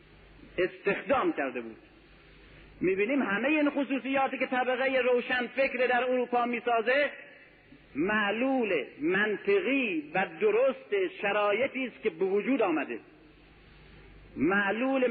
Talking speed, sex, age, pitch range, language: 105 wpm, male, 50-69, 200-270 Hz, Persian